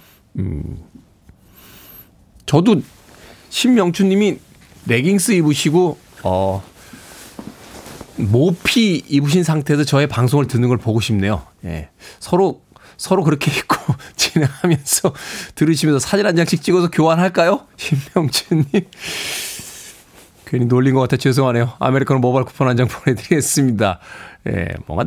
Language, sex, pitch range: Korean, male, 115-160 Hz